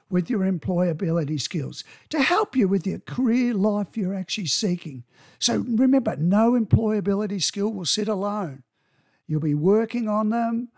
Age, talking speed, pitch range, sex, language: 60-79, 150 wpm, 170-235 Hz, male, English